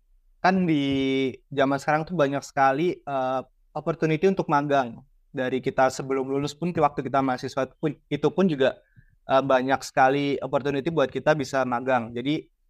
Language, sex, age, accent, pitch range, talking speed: English, male, 20-39, Indonesian, 130-155 Hz, 155 wpm